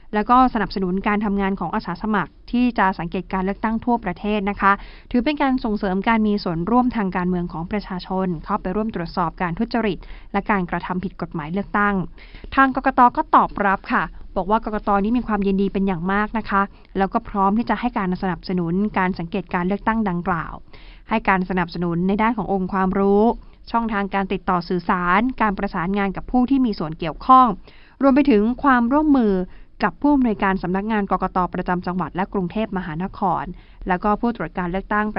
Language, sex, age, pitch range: Thai, female, 20-39, 185-235 Hz